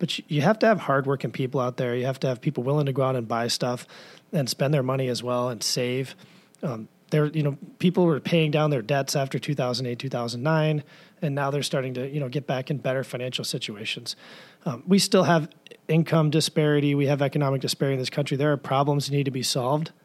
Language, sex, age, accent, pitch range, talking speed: English, male, 30-49, American, 130-160 Hz, 240 wpm